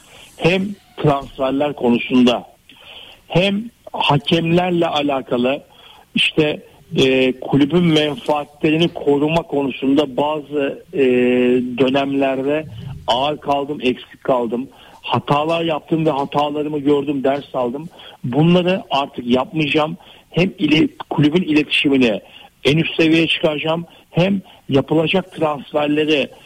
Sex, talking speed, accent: male, 90 wpm, native